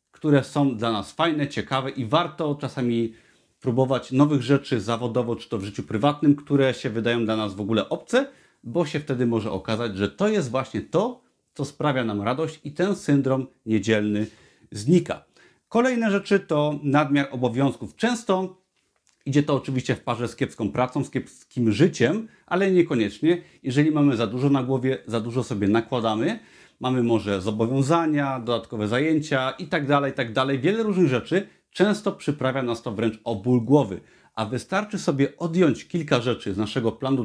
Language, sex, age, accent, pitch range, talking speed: Polish, male, 30-49, native, 120-155 Hz, 170 wpm